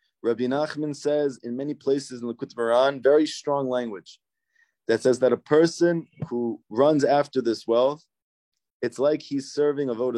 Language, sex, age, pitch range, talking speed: English, male, 20-39, 105-135 Hz, 165 wpm